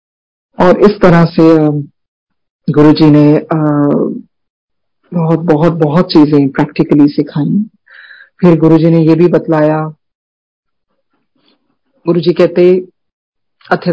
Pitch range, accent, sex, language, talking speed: 155-210 Hz, native, female, Hindi, 95 wpm